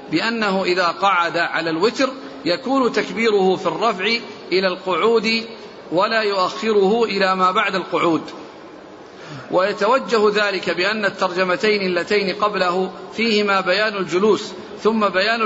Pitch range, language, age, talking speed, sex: 180-220 Hz, Arabic, 40-59, 110 wpm, male